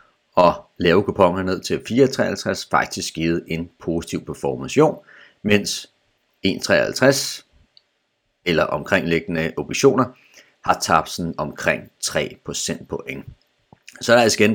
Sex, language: male, Danish